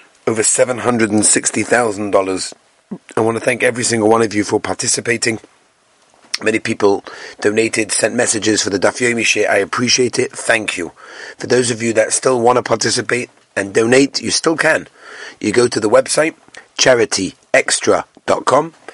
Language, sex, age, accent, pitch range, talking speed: English, male, 40-59, British, 115-170 Hz, 145 wpm